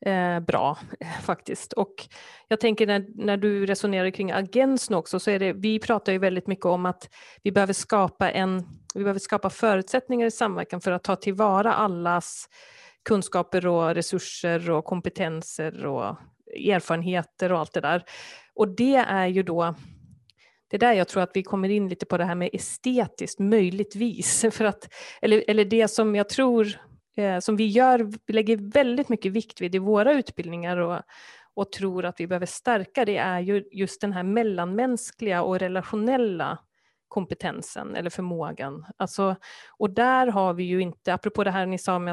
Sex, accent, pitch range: female, native, 180-220 Hz